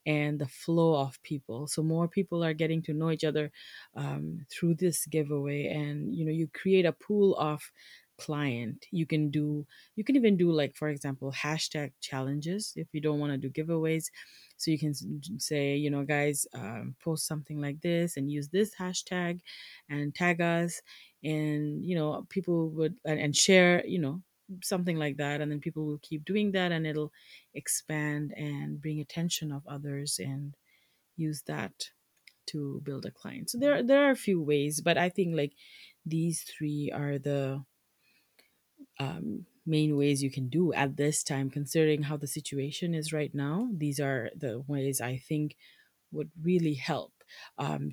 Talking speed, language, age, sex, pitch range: 175 wpm, English, 30-49, female, 145-170 Hz